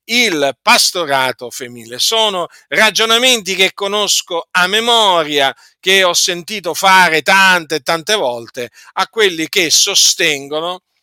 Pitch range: 150-200 Hz